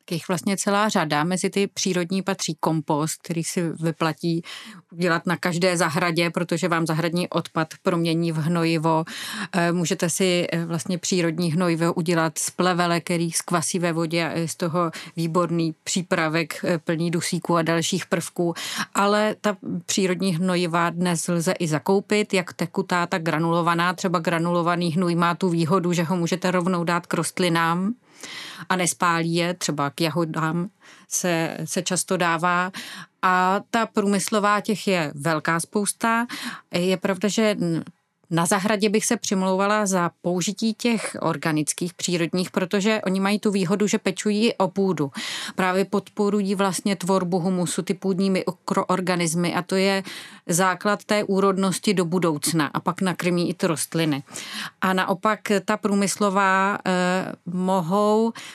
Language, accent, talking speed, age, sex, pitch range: Czech, native, 140 wpm, 30-49, female, 170-195 Hz